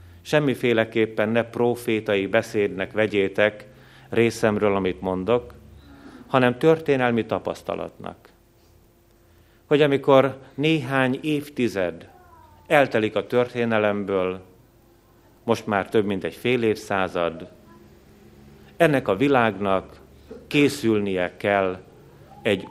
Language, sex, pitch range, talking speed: Hungarian, male, 95-125 Hz, 80 wpm